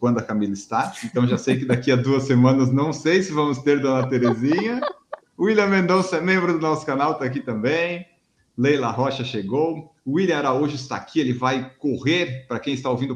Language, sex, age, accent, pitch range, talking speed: Portuguese, male, 50-69, Brazilian, 125-175 Hz, 195 wpm